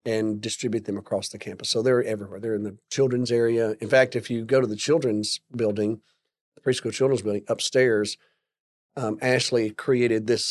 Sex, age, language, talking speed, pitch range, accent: male, 40-59, English, 185 wpm, 105-120 Hz, American